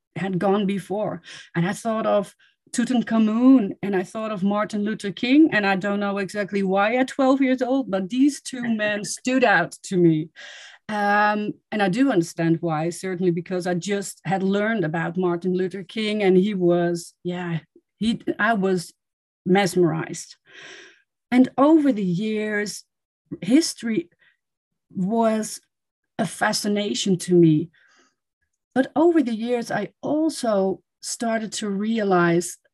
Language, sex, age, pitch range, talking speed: English, female, 40-59, 185-240 Hz, 140 wpm